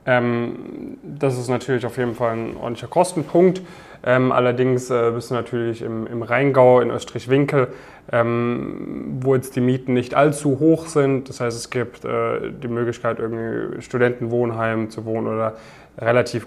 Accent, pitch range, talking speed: German, 115-135 Hz, 155 wpm